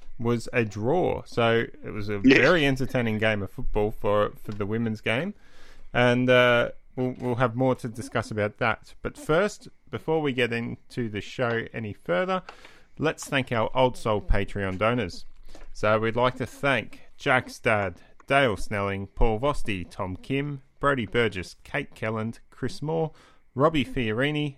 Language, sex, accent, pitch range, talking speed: English, male, Australian, 105-125 Hz, 160 wpm